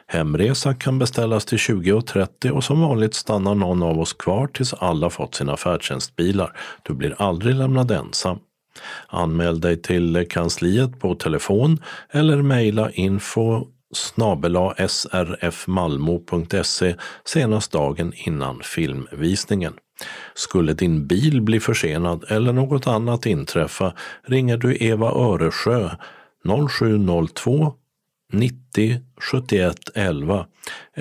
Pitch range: 85-130 Hz